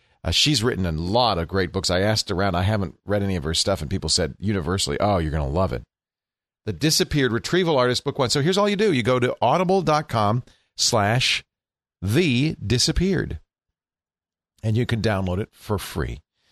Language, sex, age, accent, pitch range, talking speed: English, male, 40-59, American, 95-120 Hz, 195 wpm